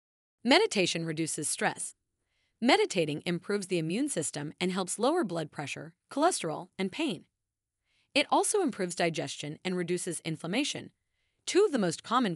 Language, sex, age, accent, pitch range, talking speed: English, female, 30-49, American, 155-240 Hz, 135 wpm